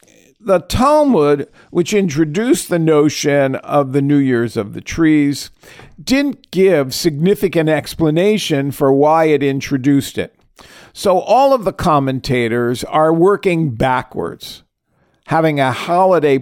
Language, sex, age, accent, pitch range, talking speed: English, male, 50-69, American, 135-180 Hz, 120 wpm